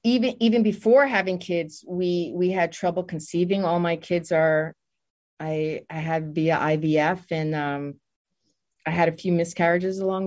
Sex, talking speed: female, 160 wpm